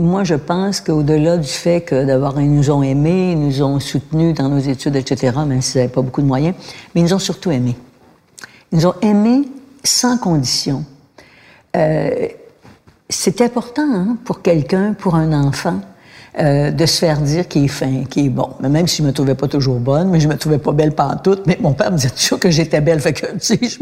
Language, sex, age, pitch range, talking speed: French, female, 60-79, 145-200 Hz, 225 wpm